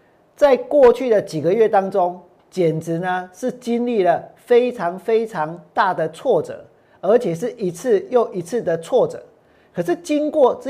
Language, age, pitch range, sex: Chinese, 40-59, 185-260 Hz, male